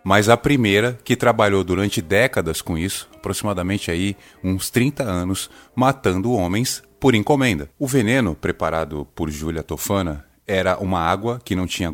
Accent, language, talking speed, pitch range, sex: Brazilian, Portuguese, 150 wpm, 95-120 Hz, male